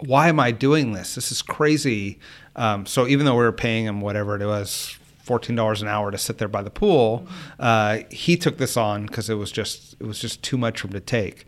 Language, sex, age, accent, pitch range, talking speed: English, male, 30-49, American, 105-125 Hz, 235 wpm